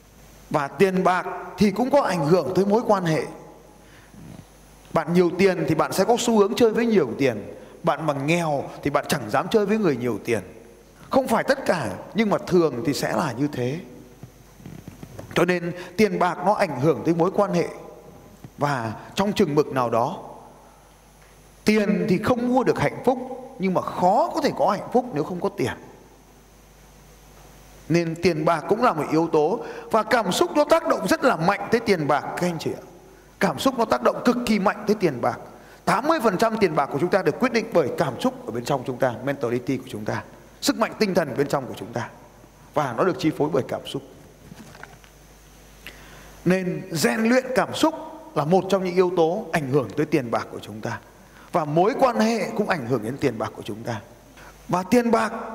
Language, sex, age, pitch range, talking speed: Vietnamese, male, 20-39, 145-220 Hz, 210 wpm